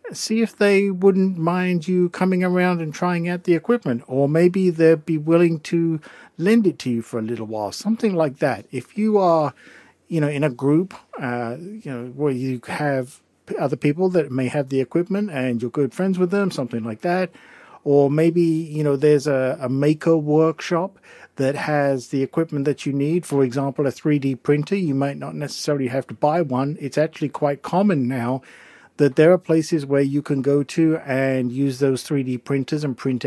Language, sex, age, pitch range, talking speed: English, male, 50-69, 130-170 Hz, 200 wpm